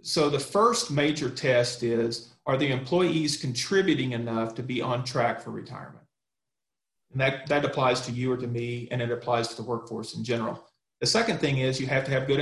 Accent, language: American, English